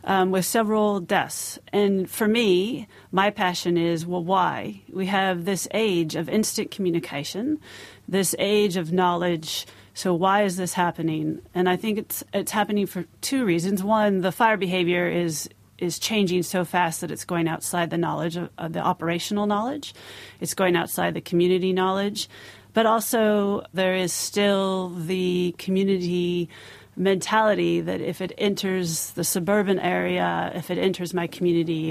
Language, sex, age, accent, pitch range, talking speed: English, female, 30-49, American, 170-200 Hz, 155 wpm